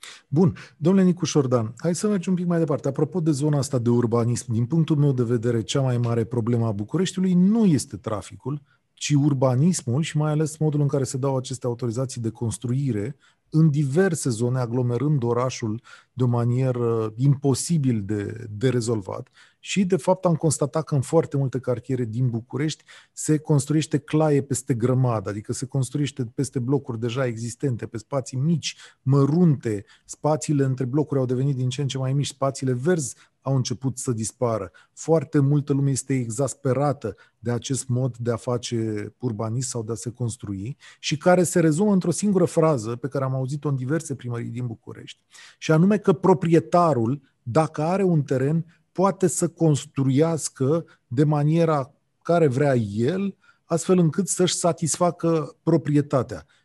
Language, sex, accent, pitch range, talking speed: Romanian, male, native, 120-160 Hz, 165 wpm